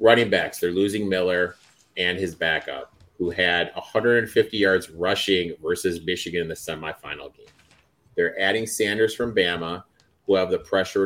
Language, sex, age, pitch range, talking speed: English, male, 30-49, 90-105 Hz, 150 wpm